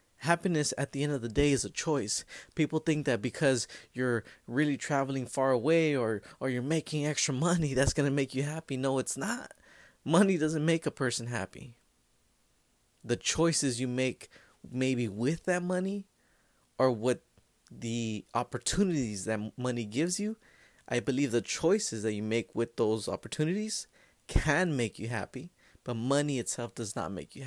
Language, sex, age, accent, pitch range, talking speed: English, male, 20-39, American, 115-155 Hz, 170 wpm